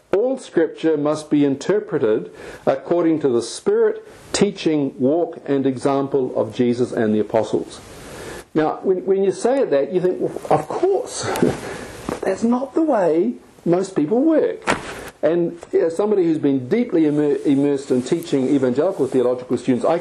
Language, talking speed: English, 155 wpm